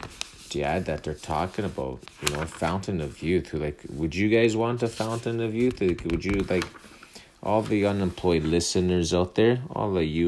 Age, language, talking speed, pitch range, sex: 30-49, English, 200 wpm, 75-95 Hz, male